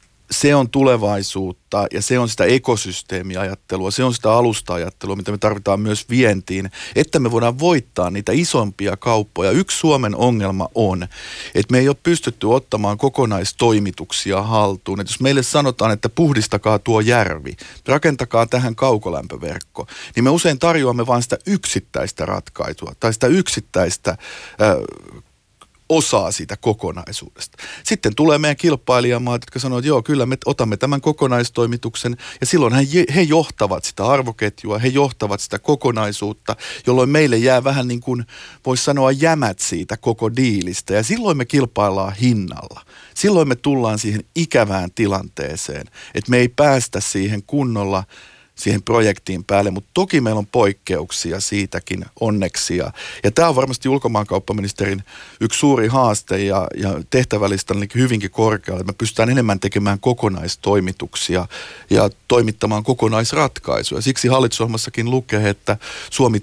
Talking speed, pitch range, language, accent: 135 wpm, 100-130 Hz, Finnish, native